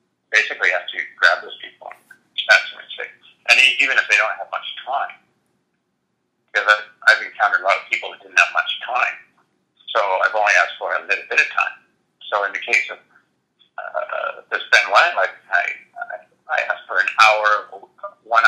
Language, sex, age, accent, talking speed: English, male, 50-69, American, 195 wpm